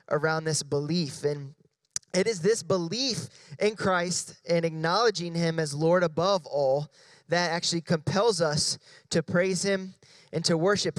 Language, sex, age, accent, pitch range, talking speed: English, male, 20-39, American, 155-190 Hz, 145 wpm